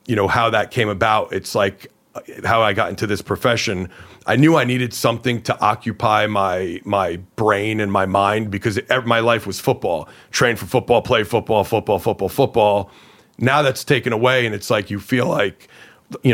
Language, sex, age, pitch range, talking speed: English, male, 40-59, 100-125 Hz, 185 wpm